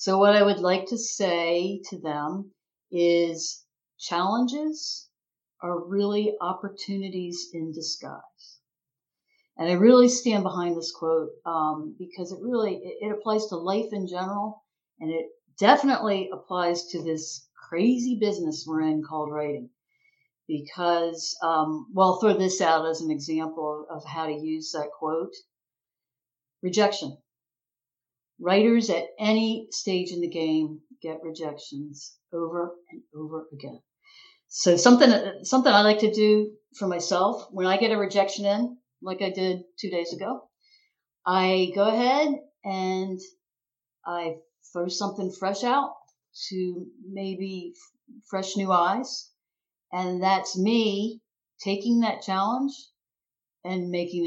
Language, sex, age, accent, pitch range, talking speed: English, female, 60-79, American, 160-210 Hz, 130 wpm